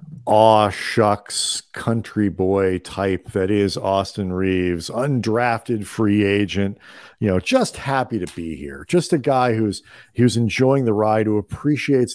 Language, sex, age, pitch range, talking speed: English, male, 40-59, 90-115 Hz, 145 wpm